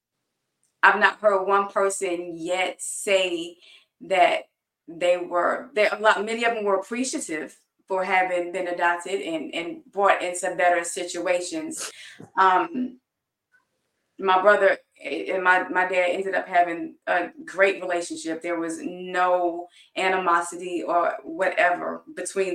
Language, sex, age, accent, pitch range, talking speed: English, female, 20-39, American, 175-225 Hz, 125 wpm